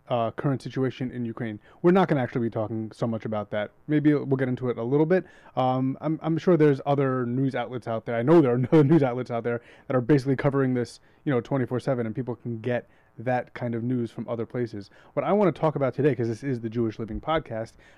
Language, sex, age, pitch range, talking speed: English, male, 30-49, 115-140 Hz, 260 wpm